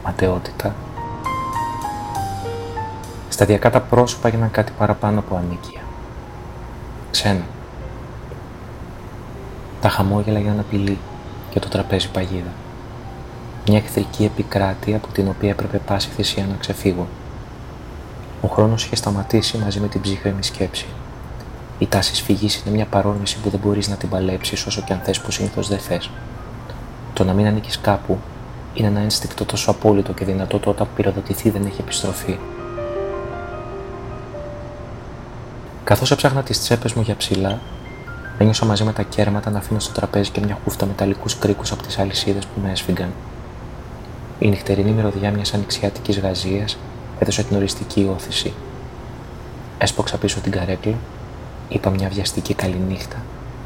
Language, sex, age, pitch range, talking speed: Greek, male, 30-49, 100-115 Hz, 135 wpm